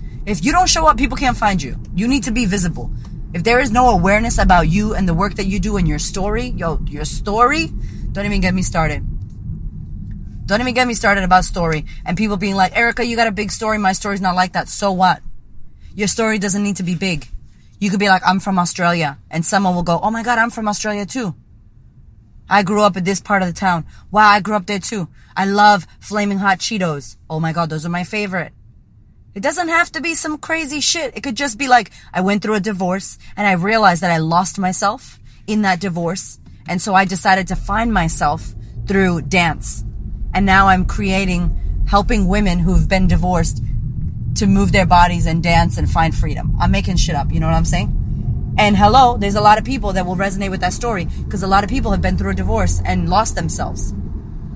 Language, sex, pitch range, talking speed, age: English, female, 165-210 Hz, 225 wpm, 20-39